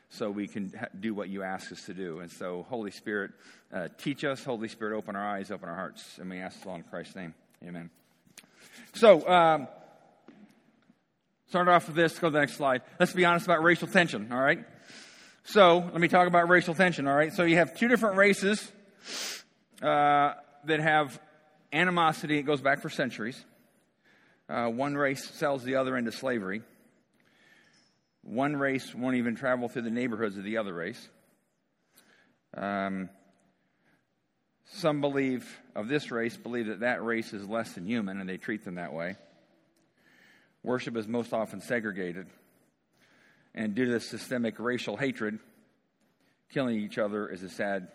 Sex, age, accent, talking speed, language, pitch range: male, 40-59, American, 170 wpm, English, 105-155 Hz